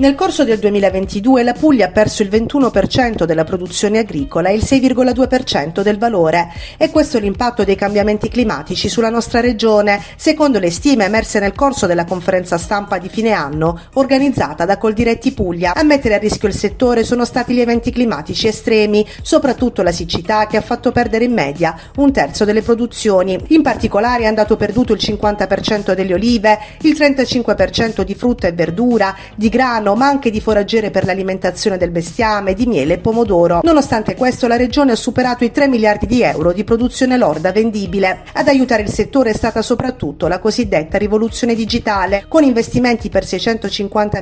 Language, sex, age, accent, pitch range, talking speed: Italian, female, 40-59, native, 195-245 Hz, 175 wpm